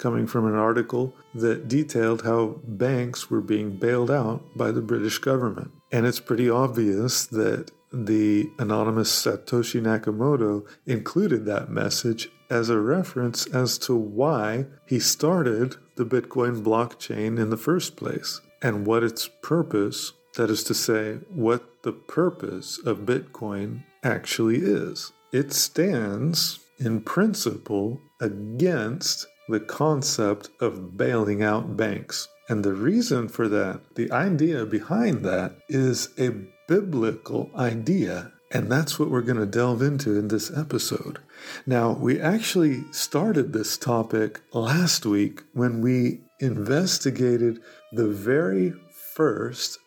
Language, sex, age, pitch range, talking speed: English, male, 50-69, 110-140 Hz, 130 wpm